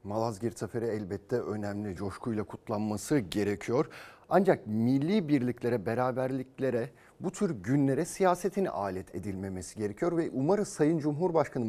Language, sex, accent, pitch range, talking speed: Turkish, male, native, 115-145 Hz, 115 wpm